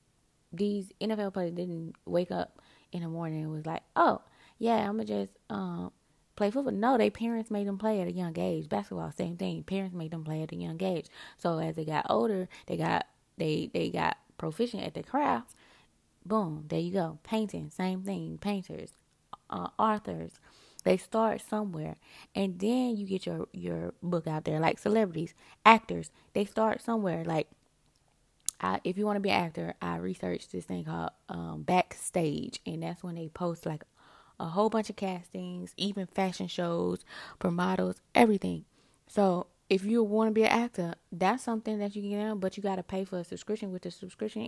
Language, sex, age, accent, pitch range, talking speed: English, female, 20-39, American, 165-215 Hz, 195 wpm